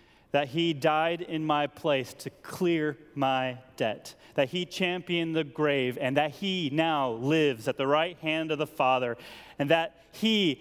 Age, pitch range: 30-49, 115-165 Hz